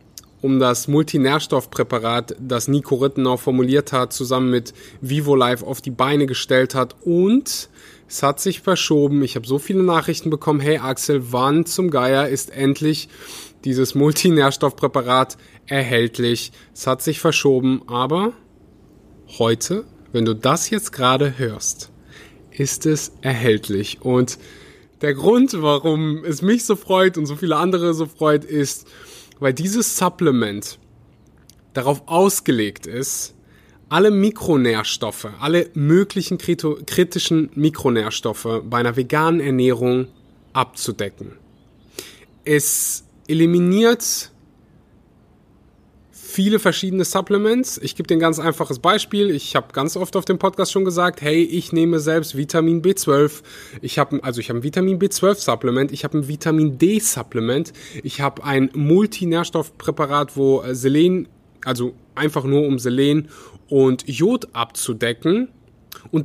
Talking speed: 125 wpm